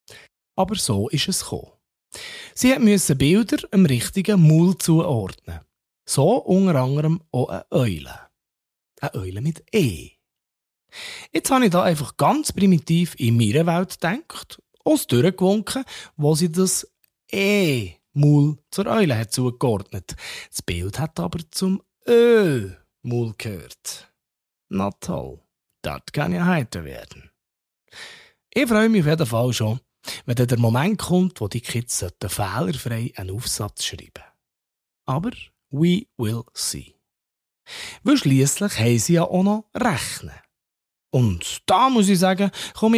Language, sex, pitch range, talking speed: German, male, 120-190 Hz, 135 wpm